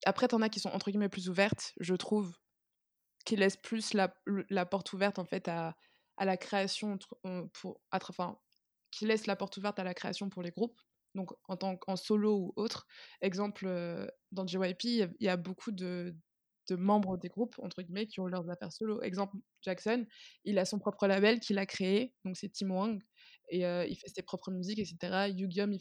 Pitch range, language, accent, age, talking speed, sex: 185-210 Hz, French, French, 20-39, 210 wpm, female